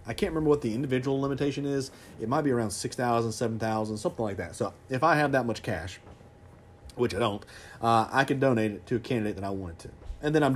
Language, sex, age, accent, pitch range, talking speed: English, male, 40-59, American, 105-135 Hz, 250 wpm